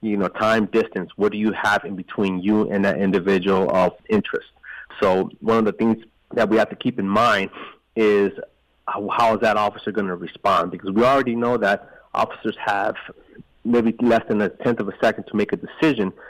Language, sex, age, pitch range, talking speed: English, male, 30-49, 100-110 Hz, 205 wpm